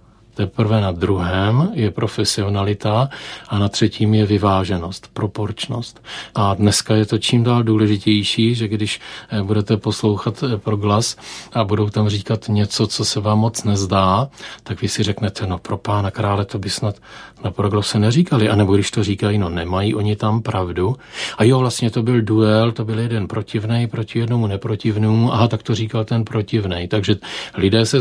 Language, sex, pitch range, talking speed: Czech, male, 105-115 Hz, 170 wpm